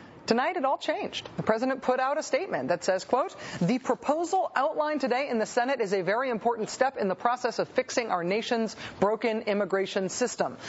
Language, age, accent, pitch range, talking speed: English, 40-59, American, 200-260 Hz, 195 wpm